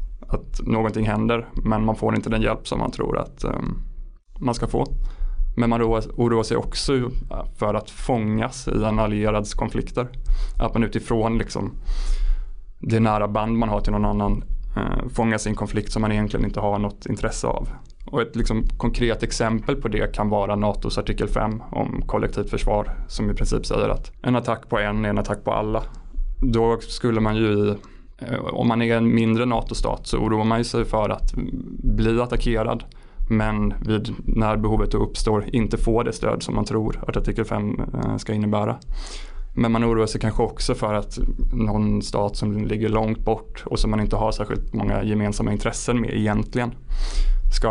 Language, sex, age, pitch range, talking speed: Swedish, male, 20-39, 105-115 Hz, 175 wpm